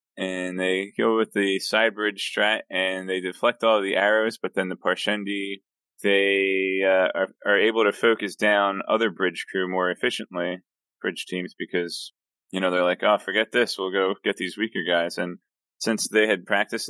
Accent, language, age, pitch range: American, English, 20-39, 90-100 Hz